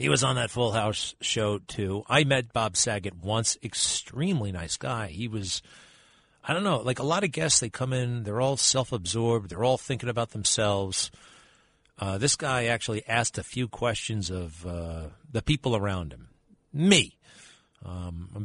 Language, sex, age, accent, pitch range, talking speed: English, male, 40-59, American, 100-140 Hz, 175 wpm